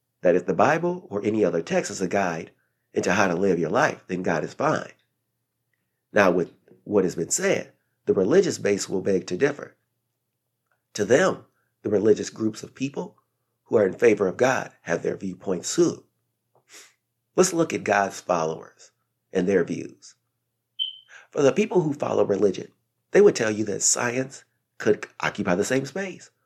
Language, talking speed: English, 170 wpm